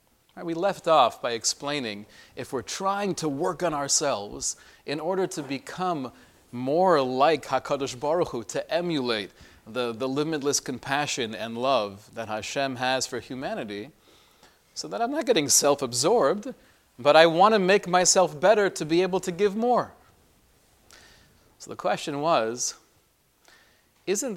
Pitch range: 130-180 Hz